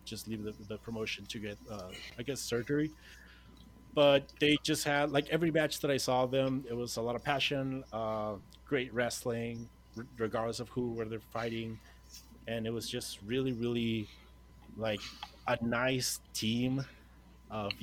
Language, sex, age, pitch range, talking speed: English, male, 30-49, 110-135 Hz, 170 wpm